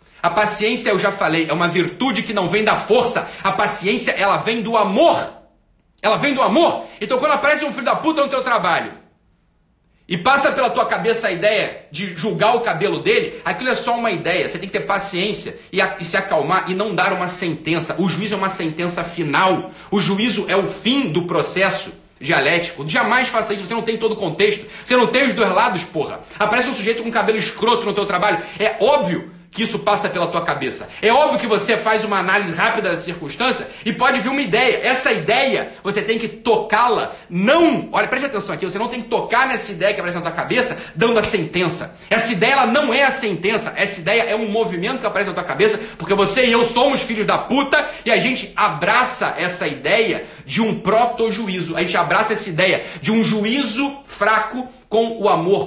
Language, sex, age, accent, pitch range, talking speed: Portuguese, male, 40-59, Brazilian, 190-230 Hz, 215 wpm